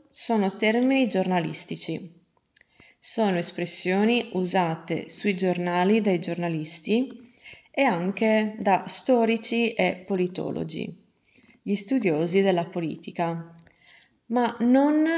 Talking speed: 85 wpm